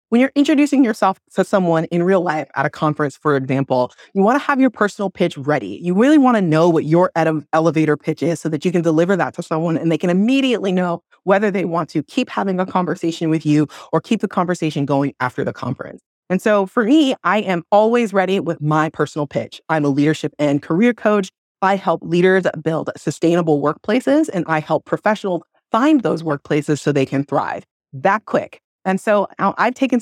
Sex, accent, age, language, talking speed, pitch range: female, American, 30-49, English, 210 wpm, 150-205 Hz